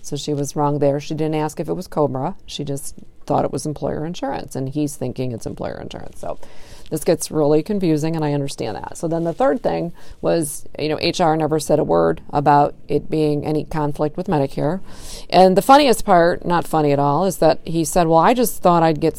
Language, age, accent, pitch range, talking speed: English, 40-59, American, 150-180 Hz, 225 wpm